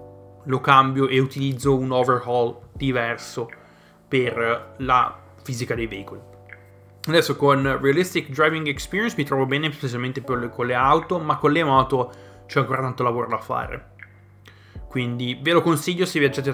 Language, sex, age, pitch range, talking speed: Italian, male, 20-39, 115-135 Hz, 145 wpm